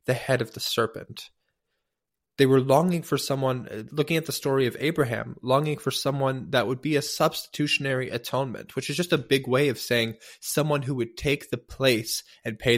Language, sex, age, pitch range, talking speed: English, male, 20-39, 115-140 Hz, 195 wpm